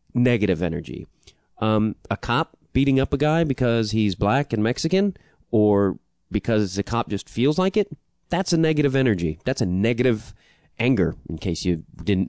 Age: 30-49